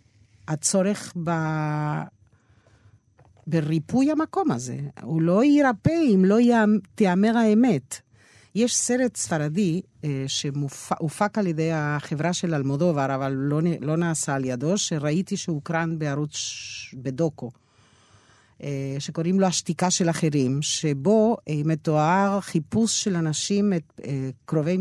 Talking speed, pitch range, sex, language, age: 105 wpm, 140-190 Hz, female, Hebrew, 50-69